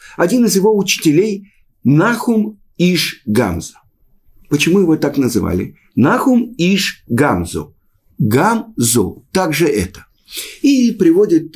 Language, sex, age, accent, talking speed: Russian, male, 50-69, native, 110 wpm